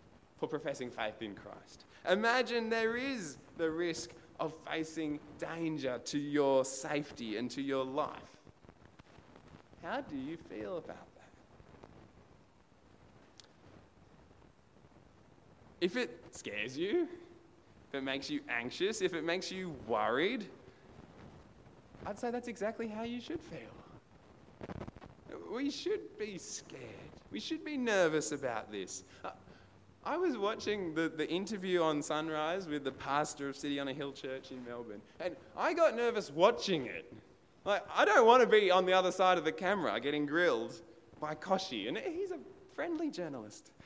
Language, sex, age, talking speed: English, male, 20-39, 140 wpm